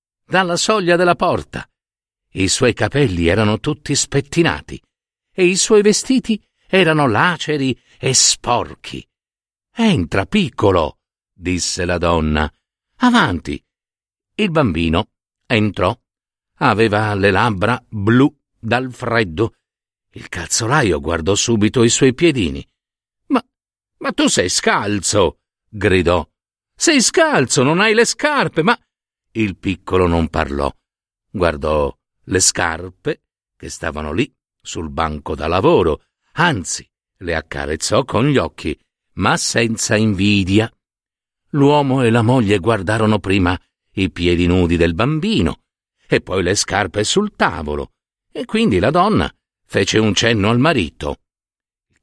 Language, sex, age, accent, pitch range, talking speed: Italian, male, 50-69, native, 95-150 Hz, 120 wpm